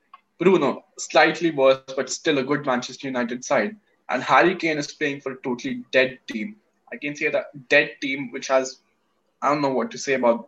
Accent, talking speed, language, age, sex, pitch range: Indian, 200 wpm, English, 10-29, male, 125-150 Hz